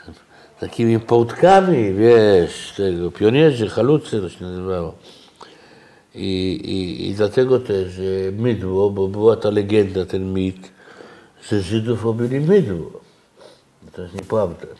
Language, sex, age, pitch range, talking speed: Polish, male, 60-79, 95-130 Hz, 120 wpm